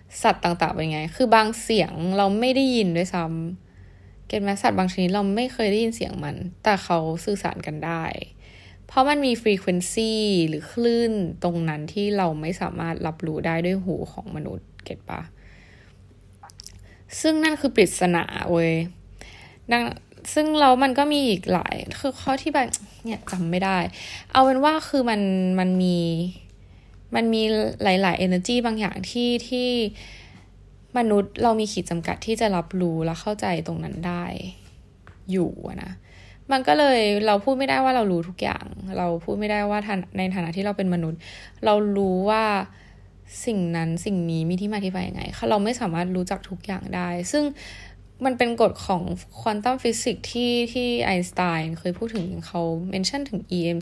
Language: Thai